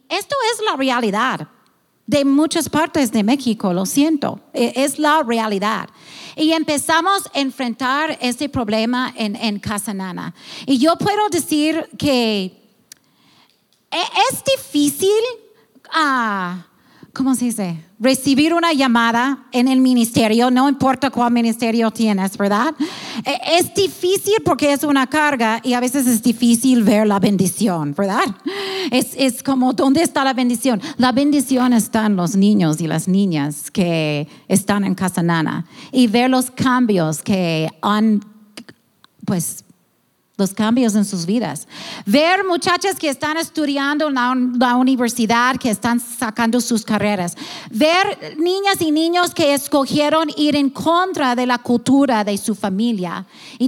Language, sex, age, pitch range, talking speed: English, female, 40-59, 215-295 Hz, 135 wpm